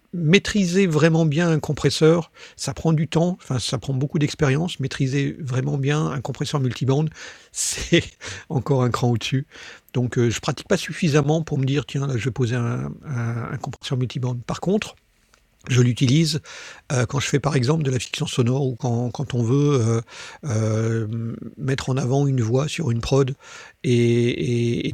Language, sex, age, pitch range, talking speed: French, male, 50-69, 125-155 Hz, 185 wpm